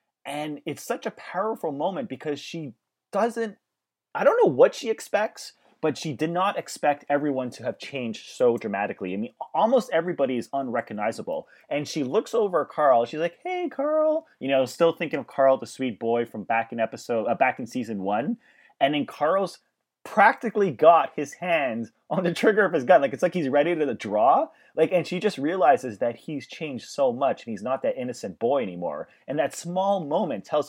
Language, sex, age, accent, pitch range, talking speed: English, male, 30-49, American, 135-210 Hz, 200 wpm